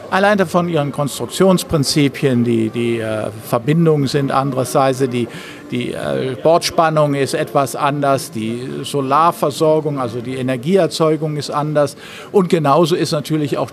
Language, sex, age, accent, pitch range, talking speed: German, male, 50-69, German, 130-160 Hz, 125 wpm